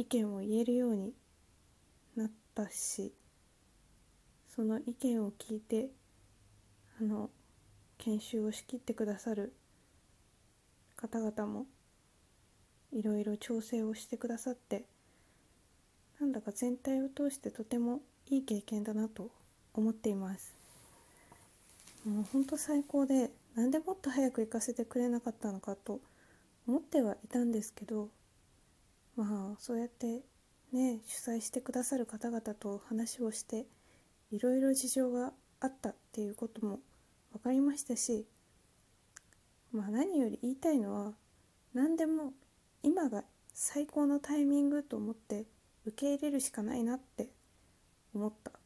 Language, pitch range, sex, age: Japanese, 215-265 Hz, female, 20-39